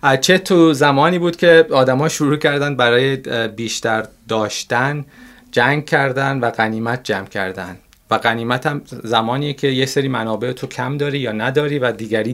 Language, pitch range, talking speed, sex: Persian, 120-155 Hz, 155 wpm, male